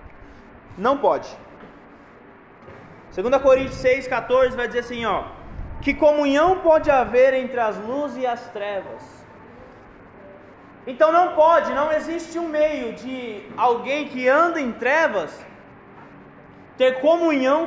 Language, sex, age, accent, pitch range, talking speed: Portuguese, male, 20-39, Brazilian, 225-290 Hz, 115 wpm